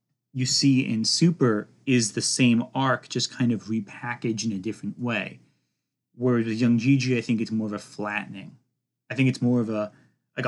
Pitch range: 110-135 Hz